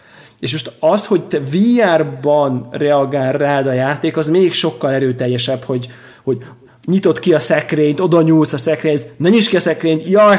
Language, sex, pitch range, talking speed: Hungarian, male, 125-155 Hz, 175 wpm